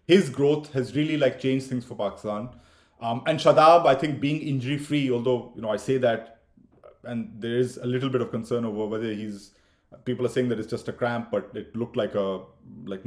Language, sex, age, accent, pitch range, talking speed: English, male, 30-49, Indian, 120-135 Hz, 220 wpm